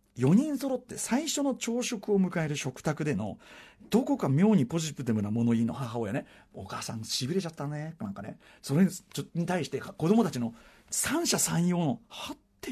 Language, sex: Japanese, male